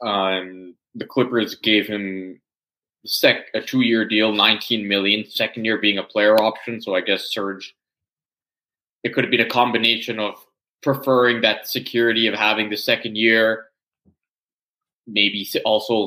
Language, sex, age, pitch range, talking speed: English, male, 20-39, 100-125 Hz, 145 wpm